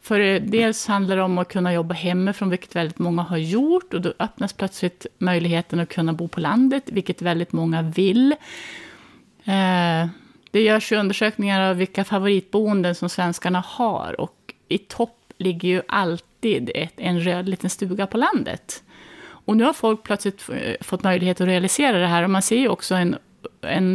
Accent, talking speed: native, 175 wpm